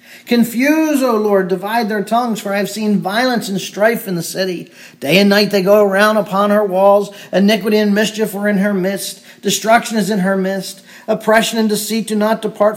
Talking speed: 205 wpm